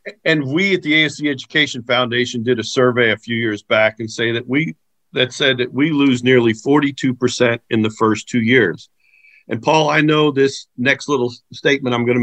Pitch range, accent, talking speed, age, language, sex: 130-160 Hz, American, 205 wpm, 50-69, English, male